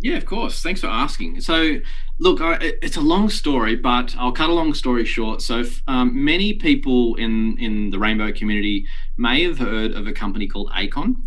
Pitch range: 100-120 Hz